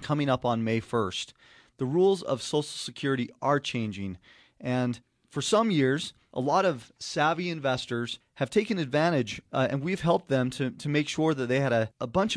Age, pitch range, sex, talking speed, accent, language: 30-49, 115-150 Hz, male, 190 wpm, American, English